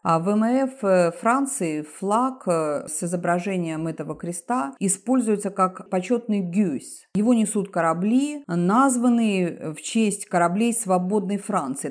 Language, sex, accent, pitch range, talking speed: Russian, female, native, 165-220 Hz, 110 wpm